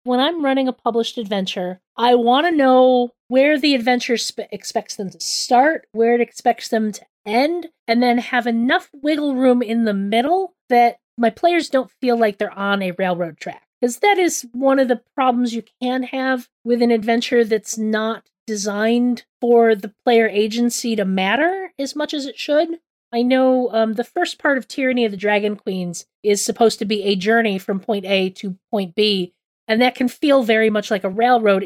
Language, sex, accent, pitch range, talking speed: English, female, American, 205-255 Hz, 195 wpm